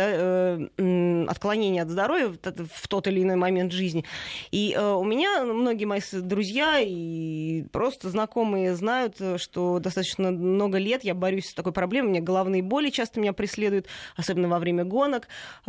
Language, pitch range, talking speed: Russian, 180-210 Hz, 150 wpm